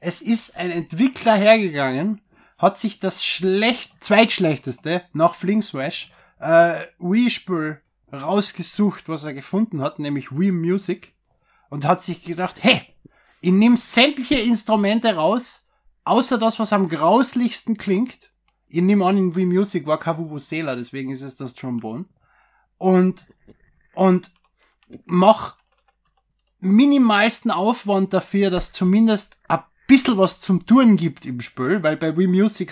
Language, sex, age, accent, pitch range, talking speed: German, male, 20-39, German, 145-200 Hz, 130 wpm